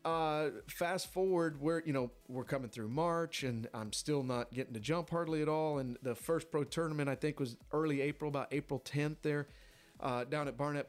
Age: 40-59